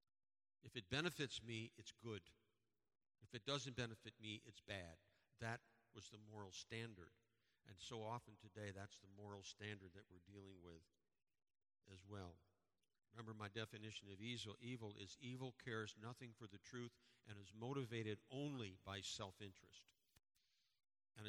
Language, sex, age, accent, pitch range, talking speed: English, male, 50-69, American, 100-115 Hz, 145 wpm